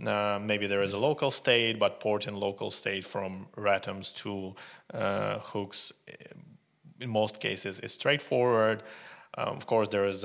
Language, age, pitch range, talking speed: English, 30-49, 100-115 Hz, 160 wpm